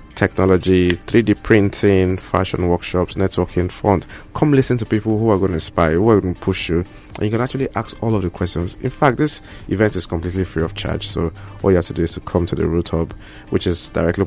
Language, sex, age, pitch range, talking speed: English, male, 20-39, 85-105 Hz, 240 wpm